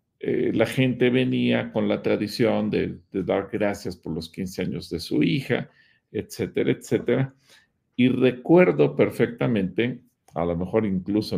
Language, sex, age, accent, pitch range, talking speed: Spanish, male, 50-69, Mexican, 90-125 Hz, 140 wpm